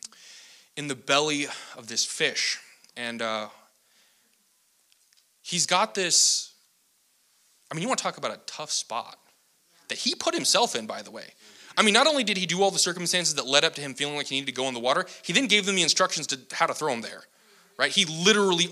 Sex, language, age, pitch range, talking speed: male, English, 20-39, 125-180 Hz, 220 wpm